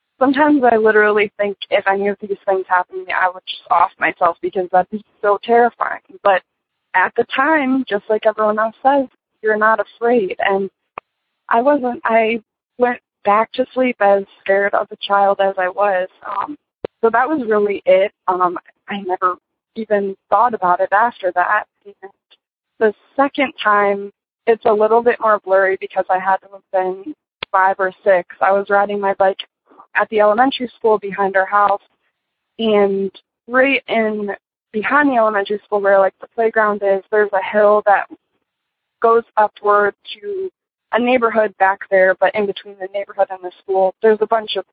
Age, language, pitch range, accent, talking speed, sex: 20-39, English, 195-230 Hz, American, 175 wpm, female